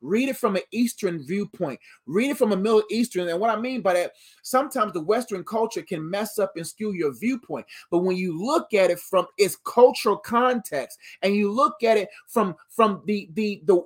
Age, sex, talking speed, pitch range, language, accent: 20-39, male, 205 wpm, 180-230 Hz, English, American